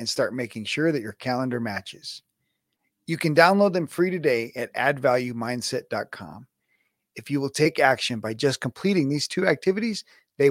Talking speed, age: 160 wpm, 40-59